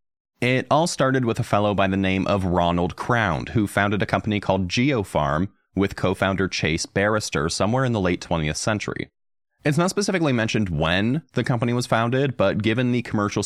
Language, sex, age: English, male, 30-49